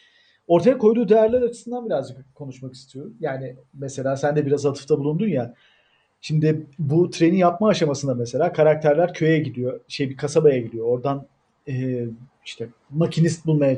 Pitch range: 140-225 Hz